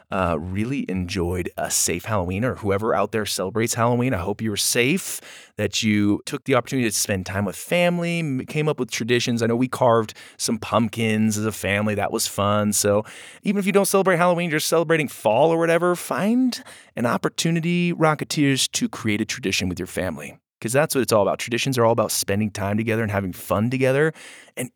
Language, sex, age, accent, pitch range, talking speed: English, male, 20-39, American, 105-140 Hz, 205 wpm